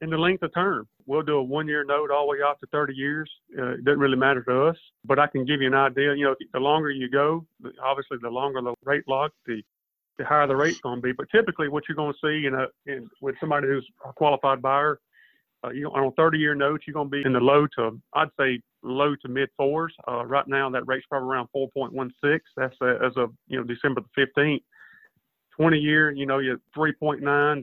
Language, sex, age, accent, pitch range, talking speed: English, male, 40-59, American, 130-150 Hz, 250 wpm